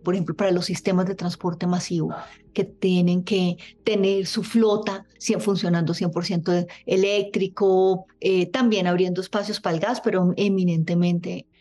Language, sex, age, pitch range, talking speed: Spanish, female, 30-49, 175-195 Hz, 135 wpm